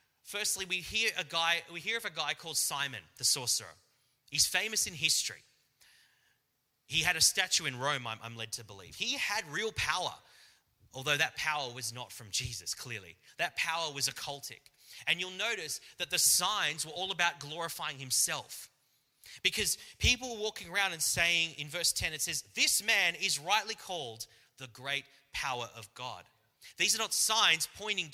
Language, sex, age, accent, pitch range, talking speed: English, male, 30-49, Australian, 130-175 Hz, 175 wpm